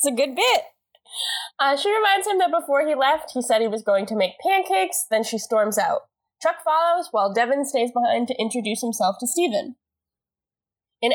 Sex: female